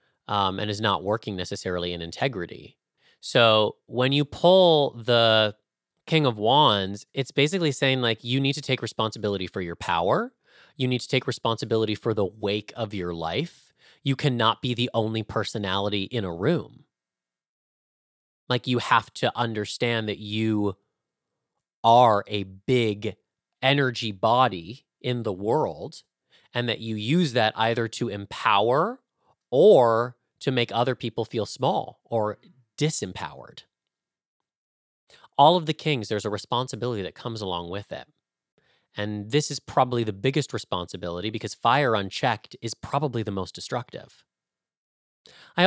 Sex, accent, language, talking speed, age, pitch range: male, American, English, 140 wpm, 30-49, 100-130 Hz